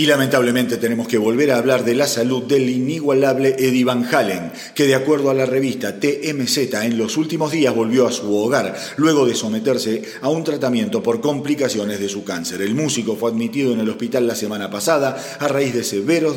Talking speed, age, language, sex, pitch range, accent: 200 wpm, 40-59, Spanish, male, 110-140 Hz, Argentinian